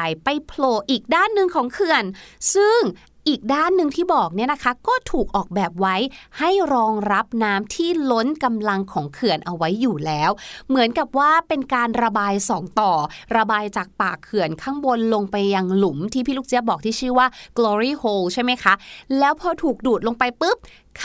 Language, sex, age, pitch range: Thai, female, 20-39, 210-290 Hz